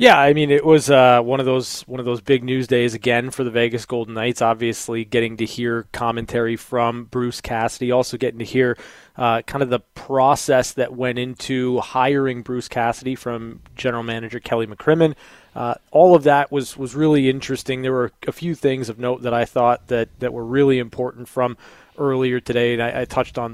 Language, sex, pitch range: English, male, 120-140 Hz